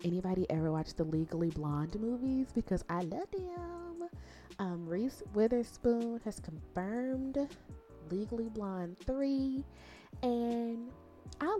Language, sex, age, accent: English, female, 20-39, American